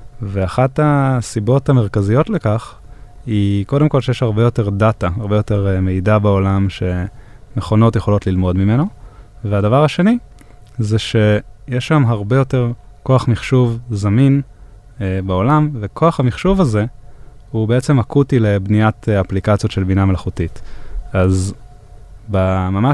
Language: Hebrew